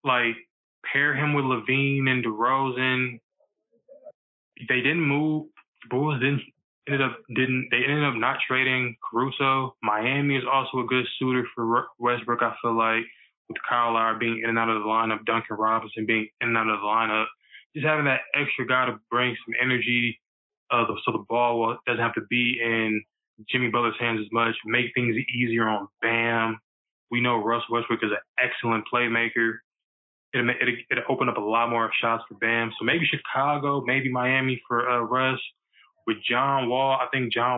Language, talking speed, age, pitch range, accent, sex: English, 180 wpm, 20-39, 115-130 Hz, American, male